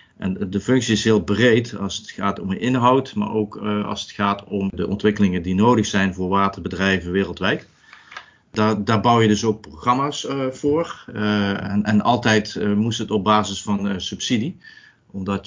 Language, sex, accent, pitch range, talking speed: Dutch, male, Dutch, 95-105 Hz, 185 wpm